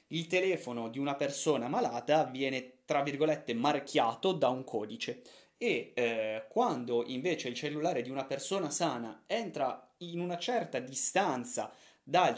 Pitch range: 115-150 Hz